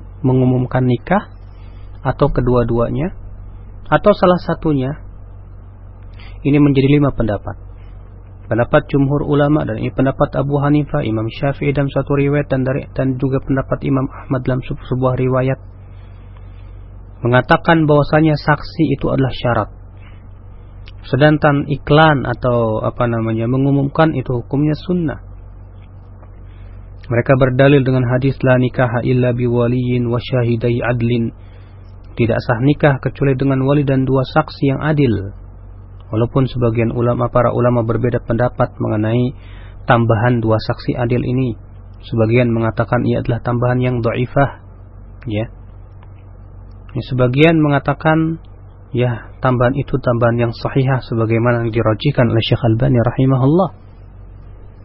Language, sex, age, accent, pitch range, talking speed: Indonesian, male, 40-59, native, 100-135 Hz, 115 wpm